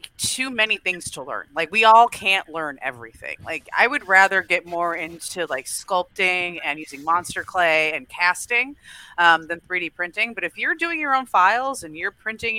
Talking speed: 190 wpm